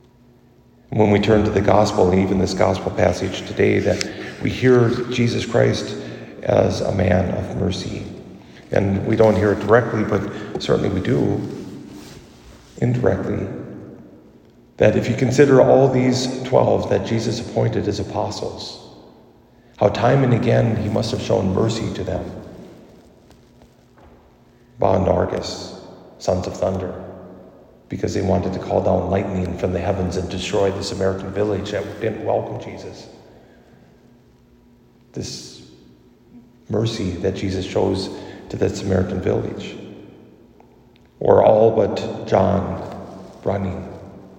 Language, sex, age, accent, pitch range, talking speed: English, male, 40-59, American, 90-115 Hz, 125 wpm